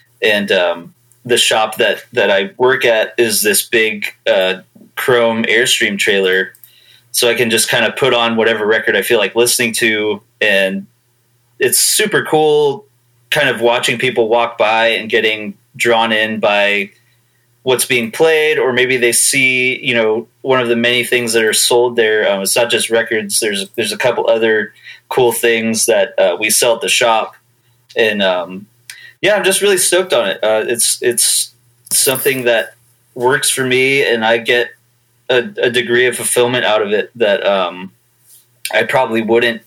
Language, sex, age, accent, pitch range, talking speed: English, male, 30-49, American, 110-125 Hz, 175 wpm